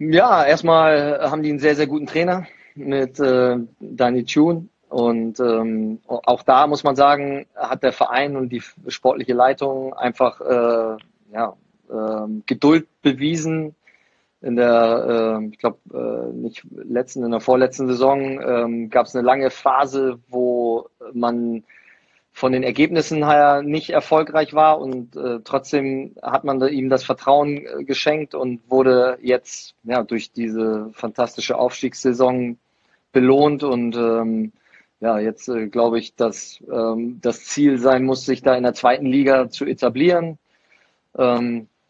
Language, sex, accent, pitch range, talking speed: German, male, German, 120-145 Hz, 145 wpm